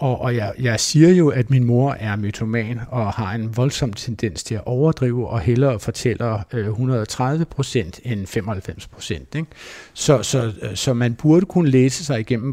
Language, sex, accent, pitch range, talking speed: Danish, male, native, 110-135 Hz, 170 wpm